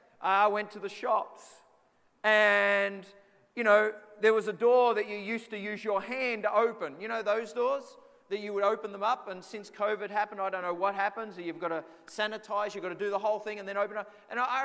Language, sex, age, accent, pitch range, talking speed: English, male, 30-49, Australian, 205-280 Hz, 235 wpm